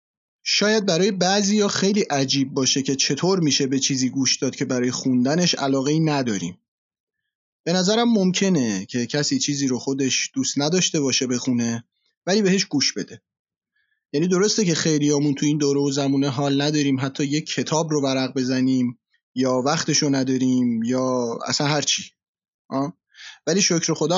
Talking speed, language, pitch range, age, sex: 160 wpm, Persian, 135-185 Hz, 30-49, male